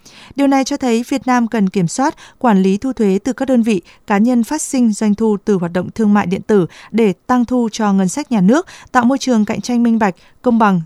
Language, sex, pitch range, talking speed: Vietnamese, female, 190-245 Hz, 260 wpm